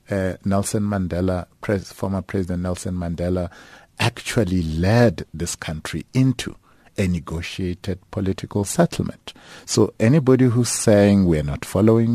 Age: 50-69